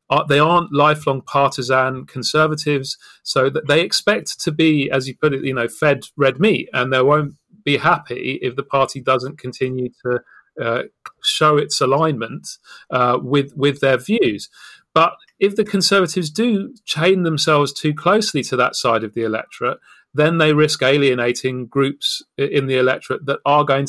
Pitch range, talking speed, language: 125-150 Hz, 165 wpm, English